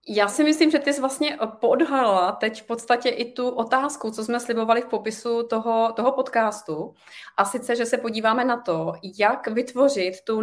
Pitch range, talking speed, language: 200-240 Hz, 185 wpm, Czech